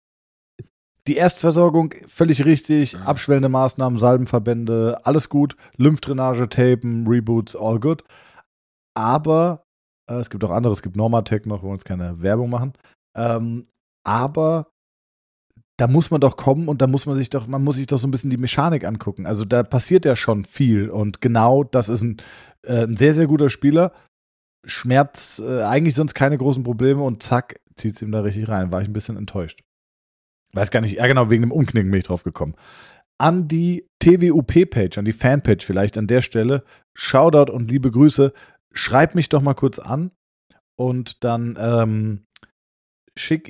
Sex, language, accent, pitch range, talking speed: male, German, German, 110-140 Hz, 175 wpm